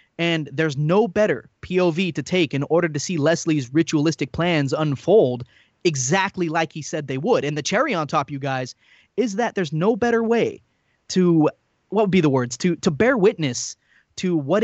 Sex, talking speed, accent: male, 190 wpm, American